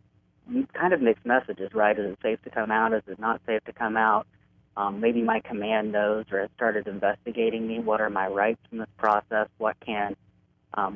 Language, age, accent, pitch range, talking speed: English, 40-59, American, 105-120 Hz, 210 wpm